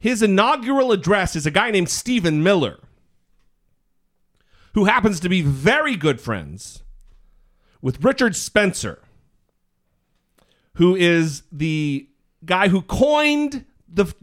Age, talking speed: 40-59, 110 wpm